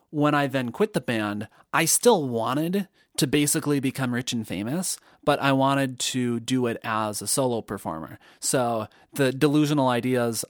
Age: 30-49